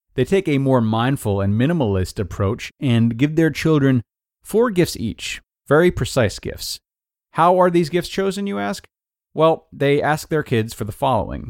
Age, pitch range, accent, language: 30-49, 100-130 Hz, American, English